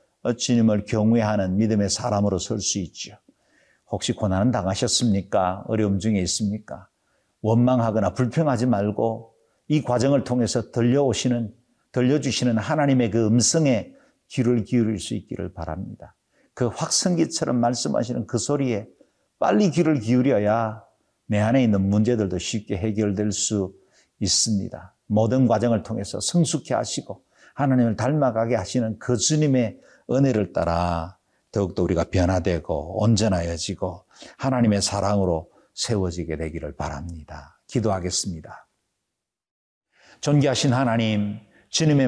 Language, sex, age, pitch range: Korean, male, 50-69, 100-125 Hz